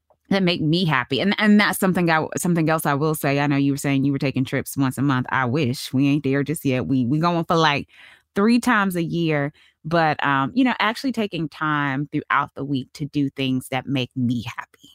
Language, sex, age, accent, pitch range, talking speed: English, female, 20-39, American, 135-165 Hz, 235 wpm